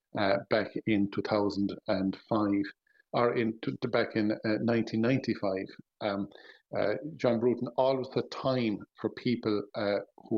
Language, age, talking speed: English, 50-69, 115 wpm